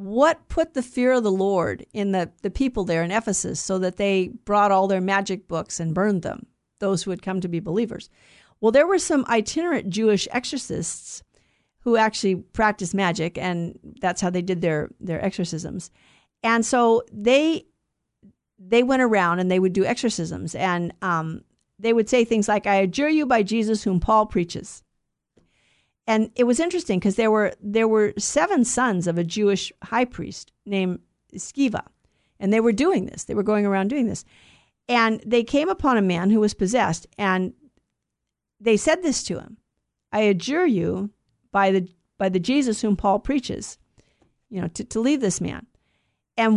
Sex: female